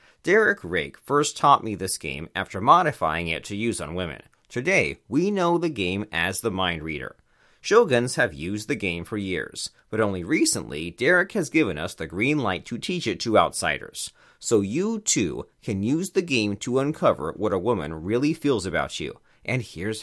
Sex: male